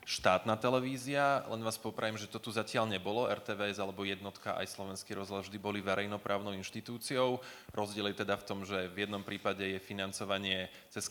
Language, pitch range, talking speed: Slovak, 100-115 Hz, 175 wpm